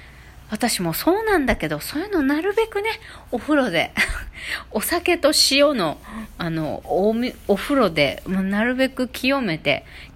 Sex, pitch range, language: female, 160-245 Hz, Japanese